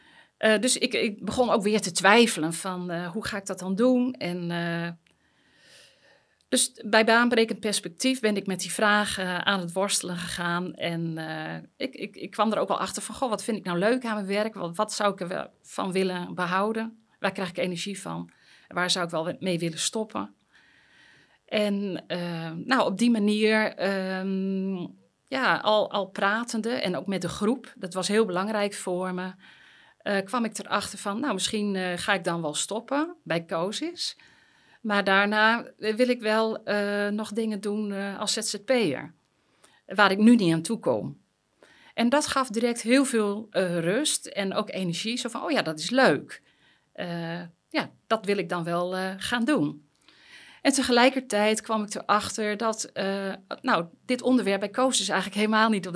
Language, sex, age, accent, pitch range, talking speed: Dutch, female, 40-59, Dutch, 180-225 Hz, 185 wpm